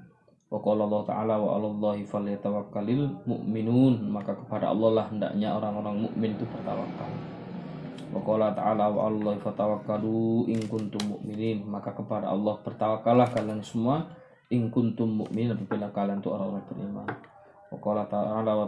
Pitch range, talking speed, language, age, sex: 105-115 Hz, 120 wpm, Malay, 20-39, male